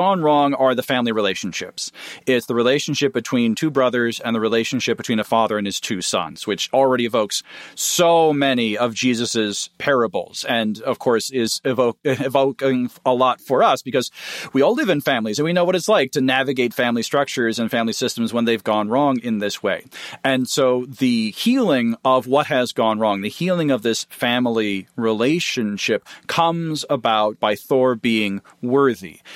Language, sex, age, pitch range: English, male, 40-59, 115-150 Hz